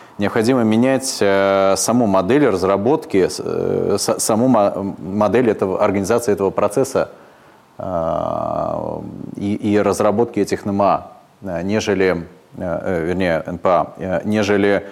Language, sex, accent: Russian, male, native